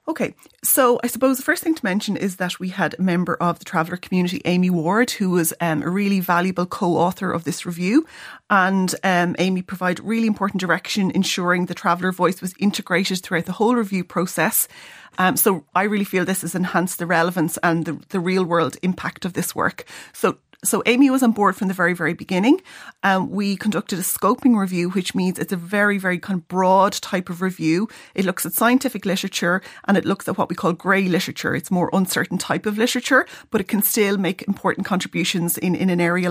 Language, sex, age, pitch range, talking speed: English, female, 30-49, 175-205 Hz, 210 wpm